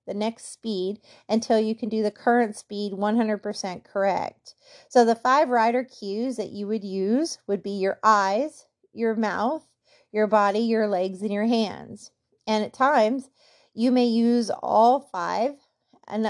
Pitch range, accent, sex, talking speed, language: 205-240 Hz, American, female, 160 wpm, English